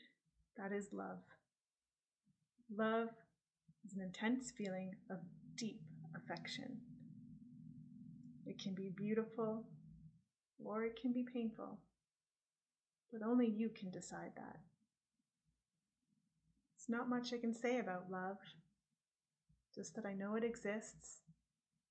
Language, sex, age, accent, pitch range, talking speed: English, female, 30-49, American, 190-240 Hz, 110 wpm